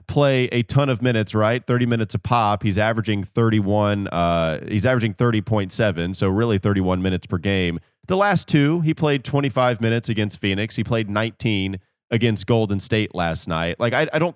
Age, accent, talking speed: 30-49, American, 185 wpm